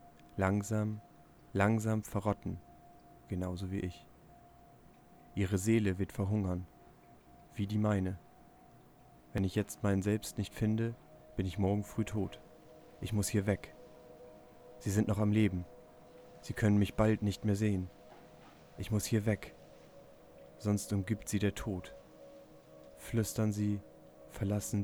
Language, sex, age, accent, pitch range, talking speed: German, male, 40-59, German, 90-105 Hz, 130 wpm